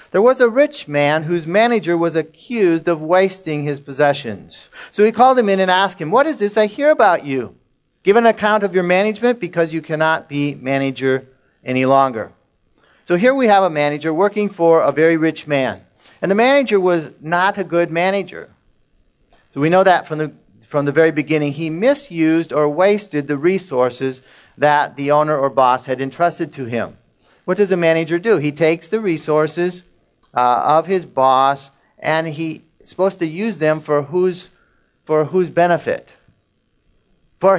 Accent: American